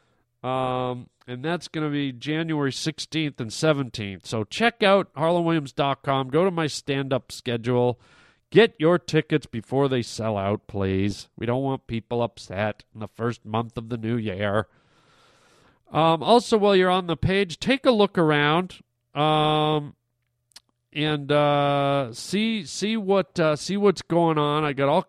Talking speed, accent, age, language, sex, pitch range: 155 wpm, American, 40-59, English, male, 125-170 Hz